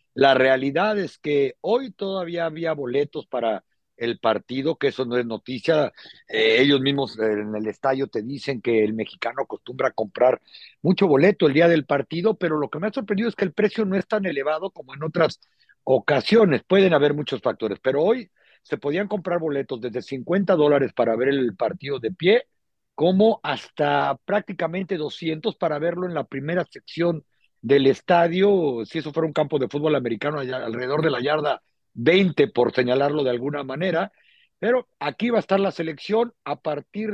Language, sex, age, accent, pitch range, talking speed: Spanish, male, 50-69, Mexican, 140-190 Hz, 180 wpm